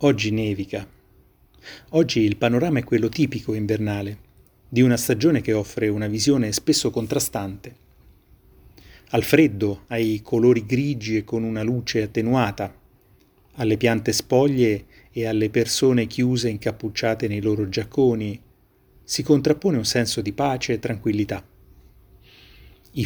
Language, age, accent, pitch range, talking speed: Italian, 30-49, native, 105-125 Hz, 125 wpm